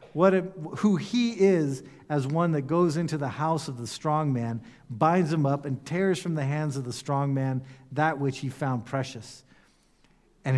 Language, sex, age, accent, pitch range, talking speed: English, male, 50-69, American, 135-195 Hz, 180 wpm